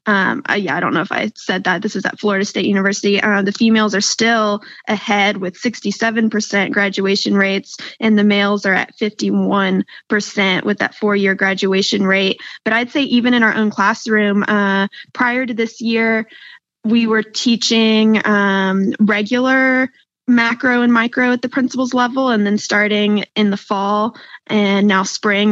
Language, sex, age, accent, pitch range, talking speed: English, female, 20-39, American, 205-240 Hz, 160 wpm